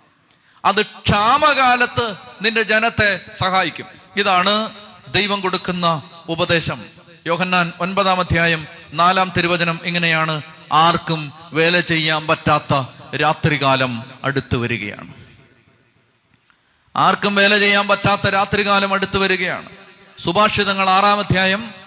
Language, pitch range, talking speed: Malayalam, 160-200 Hz, 90 wpm